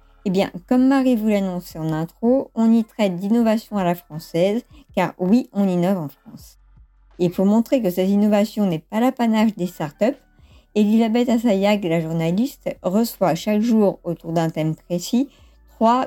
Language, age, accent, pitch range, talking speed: French, 50-69, French, 185-235 Hz, 165 wpm